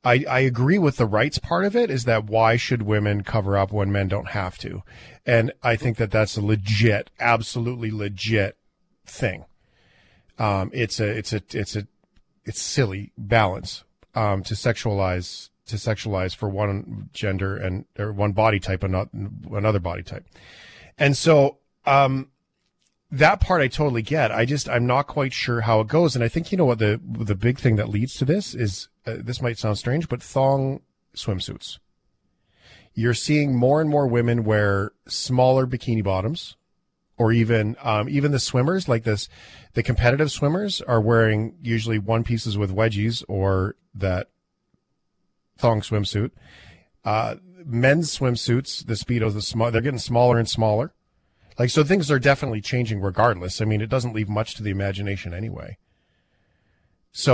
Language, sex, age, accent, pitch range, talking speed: English, male, 40-59, American, 105-125 Hz, 170 wpm